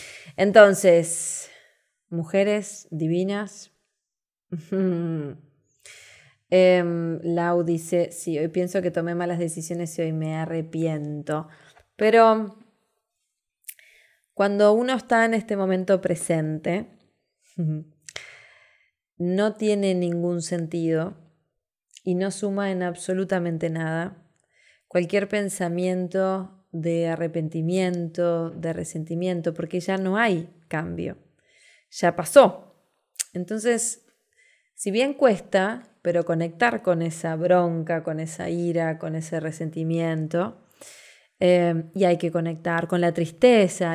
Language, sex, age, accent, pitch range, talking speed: Spanish, female, 20-39, Argentinian, 165-190 Hz, 95 wpm